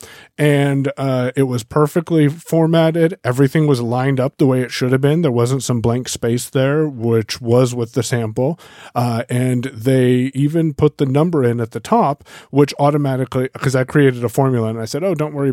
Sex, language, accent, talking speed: male, English, American, 195 wpm